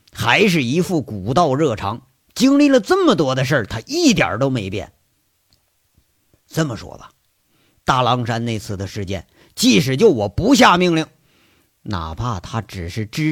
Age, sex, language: 50-69, male, Chinese